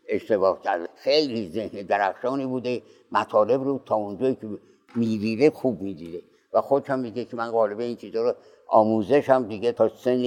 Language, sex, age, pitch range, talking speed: Persian, male, 60-79, 110-135 Hz, 150 wpm